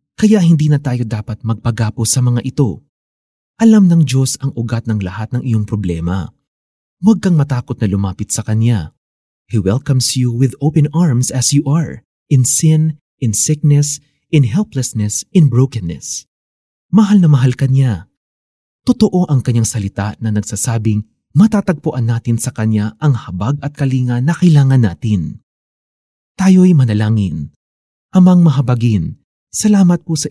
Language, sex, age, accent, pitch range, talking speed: Filipino, male, 30-49, native, 110-150 Hz, 140 wpm